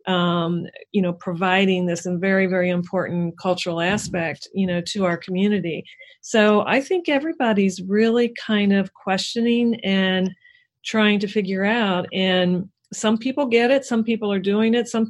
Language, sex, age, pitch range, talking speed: English, female, 40-59, 185-215 Hz, 155 wpm